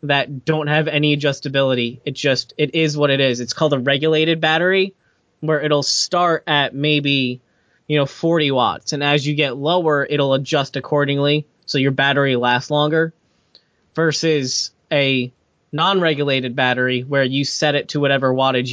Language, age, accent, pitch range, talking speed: English, 20-39, American, 130-150 Hz, 160 wpm